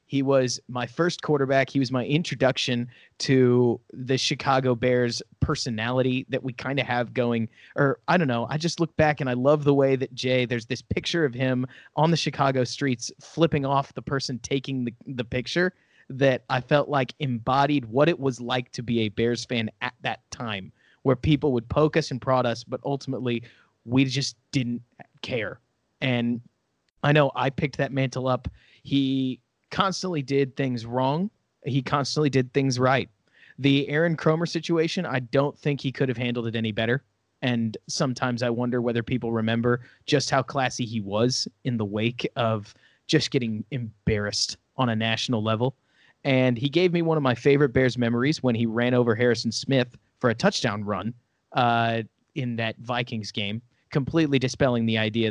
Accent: American